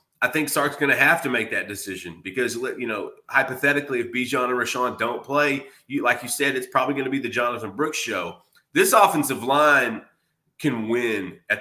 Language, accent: English, American